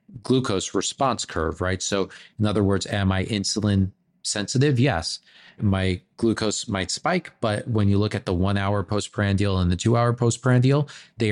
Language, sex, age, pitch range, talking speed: English, male, 30-49, 95-115 Hz, 170 wpm